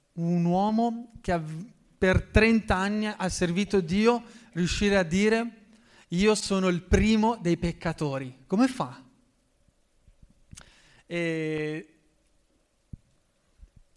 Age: 30-49